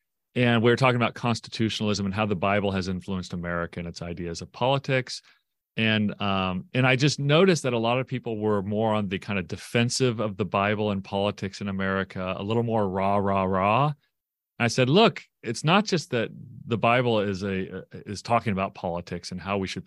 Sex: male